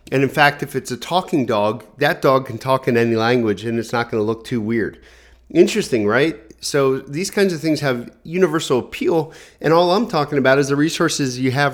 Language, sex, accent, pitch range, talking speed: English, male, American, 120-150 Hz, 220 wpm